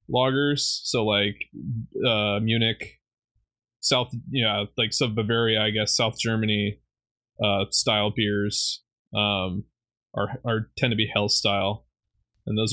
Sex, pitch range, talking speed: male, 105-125 Hz, 125 wpm